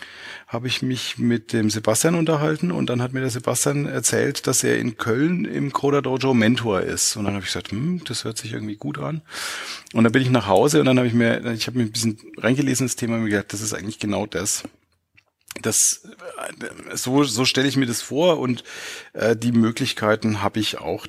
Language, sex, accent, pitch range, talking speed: German, male, German, 110-130 Hz, 215 wpm